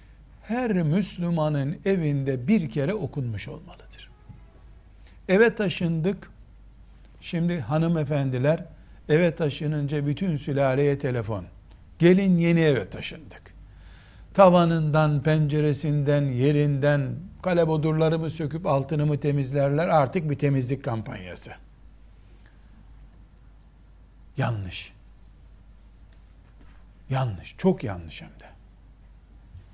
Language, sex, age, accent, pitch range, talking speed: Turkish, male, 60-79, native, 105-155 Hz, 75 wpm